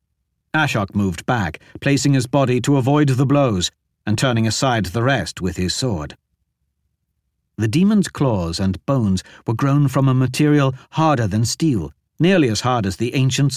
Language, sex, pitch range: English, male, 85-135 Hz